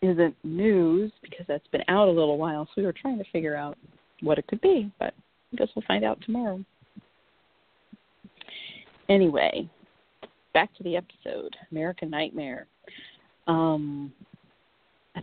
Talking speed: 140 wpm